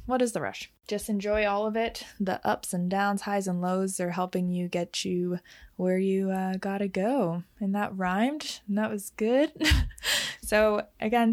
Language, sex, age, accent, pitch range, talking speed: English, female, 20-39, American, 185-215 Hz, 185 wpm